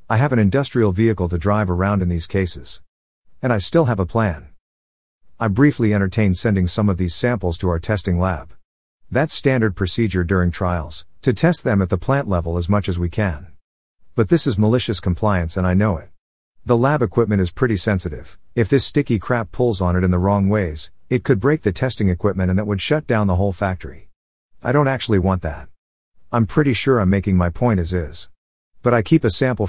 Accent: American